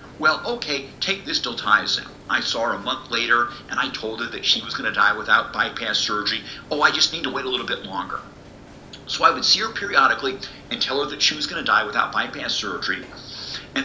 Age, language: 50-69, English